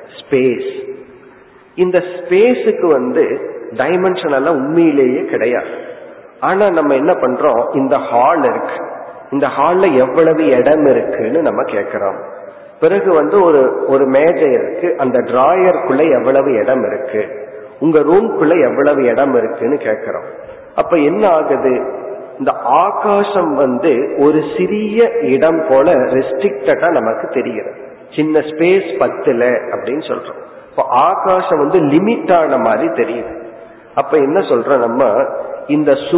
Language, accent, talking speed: Tamil, native, 85 wpm